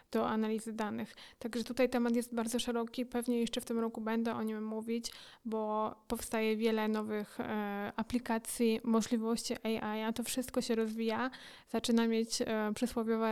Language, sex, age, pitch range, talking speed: Polish, female, 20-39, 220-235 Hz, 145 wpm